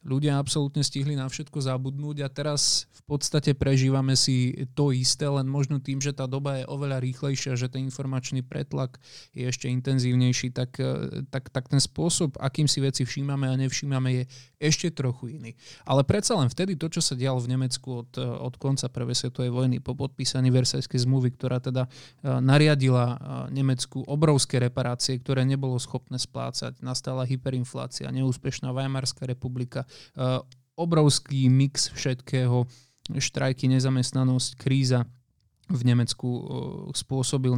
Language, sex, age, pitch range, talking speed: Slovak, male, 20-39, 125-145 Hz, 140 wpm